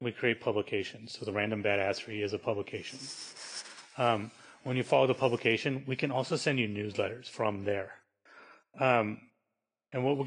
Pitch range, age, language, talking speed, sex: 110-130 Hz, 30-49, English, 165 wpm, male